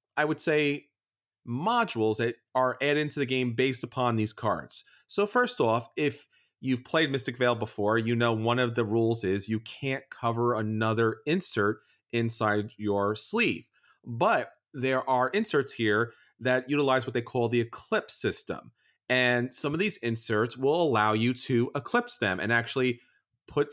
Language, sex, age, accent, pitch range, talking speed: English, male, 30-49, American, 115-145 Hz, 165 wpm